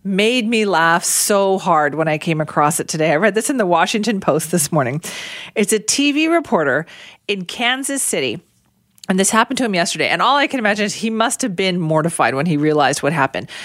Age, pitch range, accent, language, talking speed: 40-59, 165-235 Hz, American, English, 215 wpm